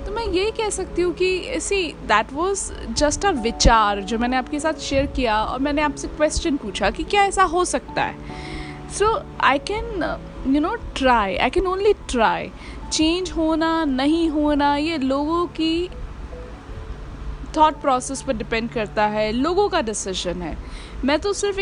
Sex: female